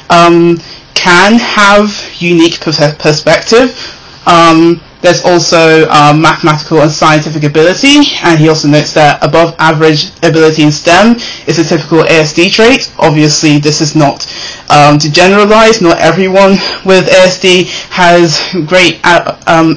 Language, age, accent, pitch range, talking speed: English, 20-39, British, 150-175 Hz, 130 wpm